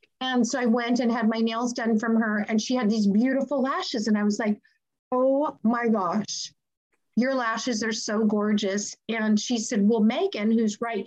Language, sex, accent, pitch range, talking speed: English, female, American, 220-260 Hz, 195 wpm